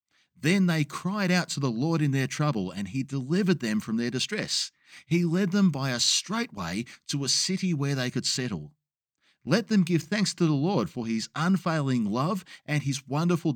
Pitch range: 130-185 Hz